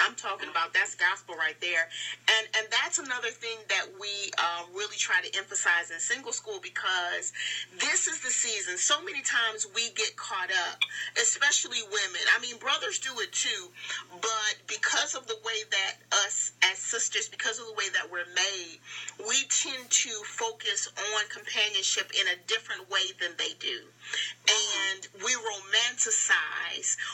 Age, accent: 40-59, American